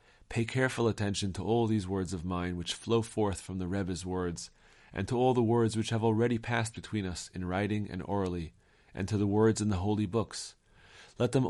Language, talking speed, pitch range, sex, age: English, 215 wpm, 90-115 Hz, male, 40-59